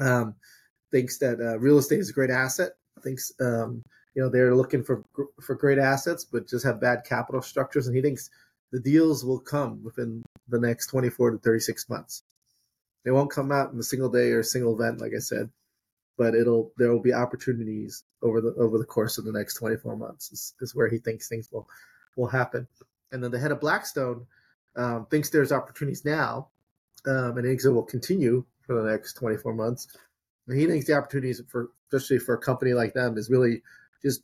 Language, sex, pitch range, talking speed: English, male, 115-130 Hz, 205 wpm